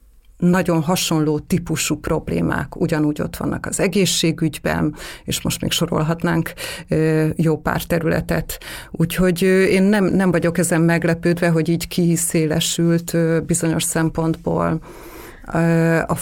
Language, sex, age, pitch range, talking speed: Hungarian, female, 30-49, 165-185 Hz, 105 wpm